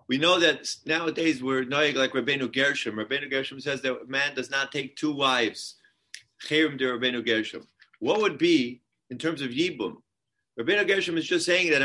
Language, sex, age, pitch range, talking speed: English, male, 40-59, 140-180 Hz, 180 wpm